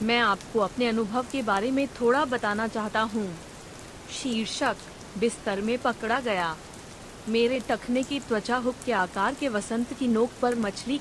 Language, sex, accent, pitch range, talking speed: Hindi, female, native, 210-250 Hz, 160 wpm